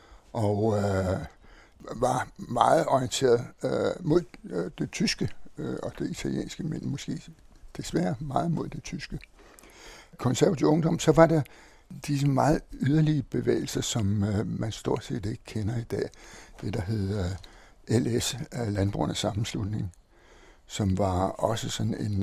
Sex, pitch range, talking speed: male, 105-145 Hz, 140 wpm